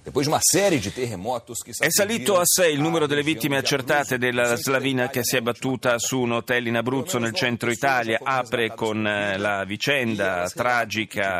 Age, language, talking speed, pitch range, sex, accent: 40-59, Italian, 145 wpm, 110-135 Hz, male, native